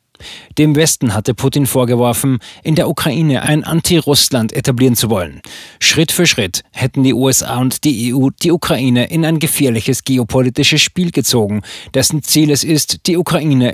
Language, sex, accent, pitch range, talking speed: German, male, German, 125-155 Hz, 155 wpm